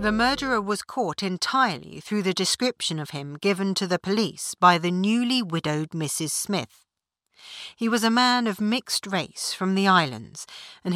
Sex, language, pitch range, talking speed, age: female, English, 180-230 Hz, 170 wpm, 60-79